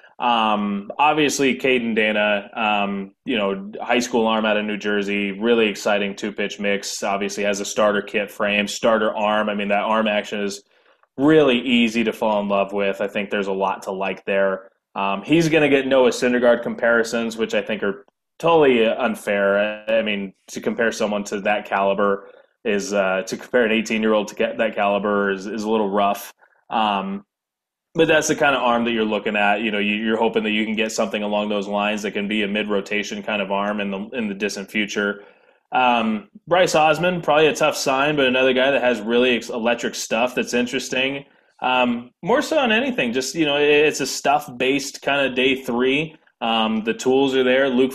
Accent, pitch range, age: American, 105-130 Hz, 20-39